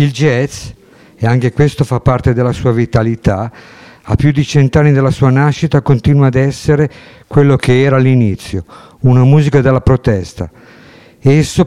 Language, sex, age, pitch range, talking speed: Italian, male, 50-69, 120-145 Hz, 150 wpm